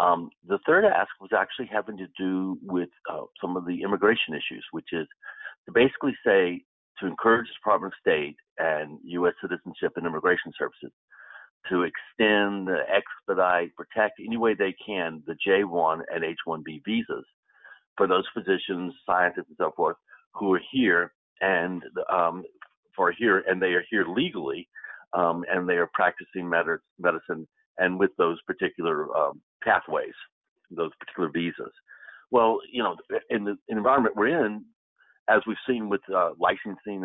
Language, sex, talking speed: English, male, 150 wpm